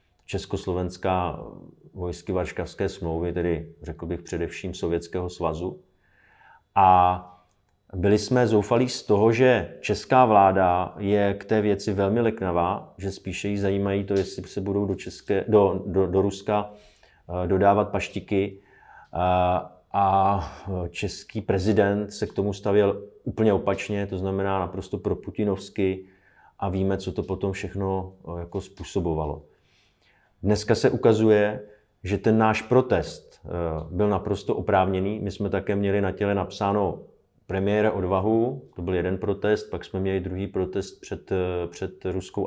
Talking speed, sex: 135 wpm, male